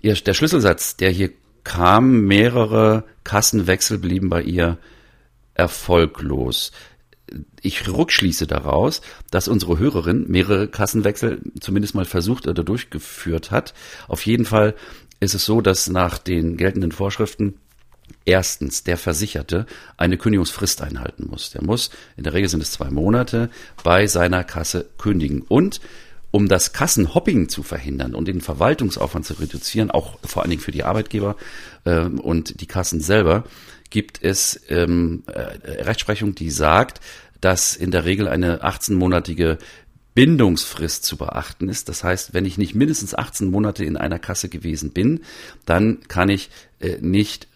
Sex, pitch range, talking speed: male, 85-100 Hz, 145 wpm